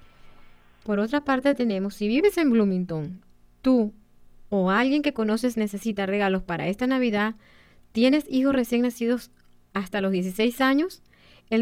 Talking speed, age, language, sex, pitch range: 140 wpm, 30-49, English, female, 190-245 Hz